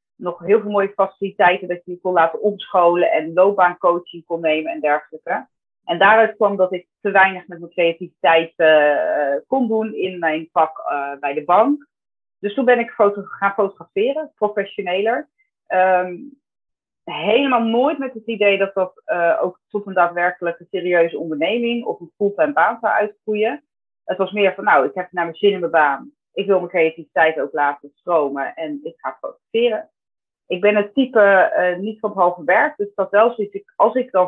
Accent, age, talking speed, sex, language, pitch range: Dutch, 30-49, 190 wpm, female, Dutch, 170-215 Hz